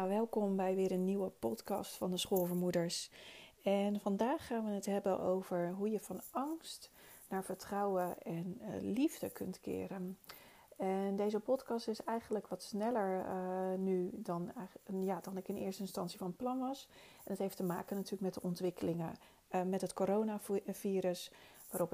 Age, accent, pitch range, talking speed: 40-59, Dutch, 185-210 Hz, 160 wpm